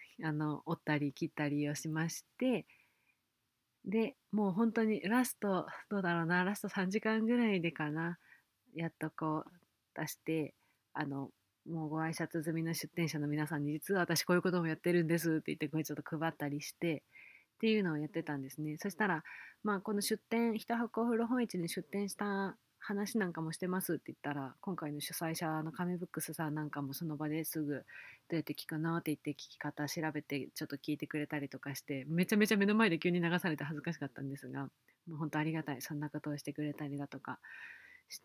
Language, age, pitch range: Japanese, 30-49, 150-200 Hz